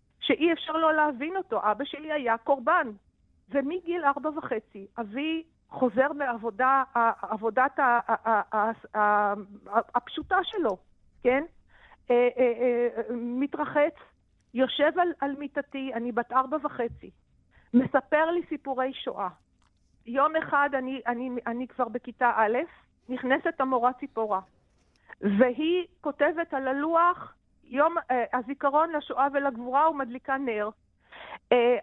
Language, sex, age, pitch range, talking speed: Hebrew, female, 50-69, 250-325 Hz, 100 wpm